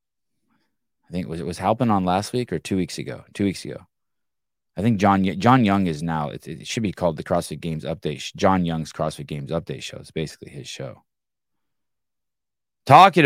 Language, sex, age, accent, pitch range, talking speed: English, male, 20-39, American, 85-115 Hz, 195 wpm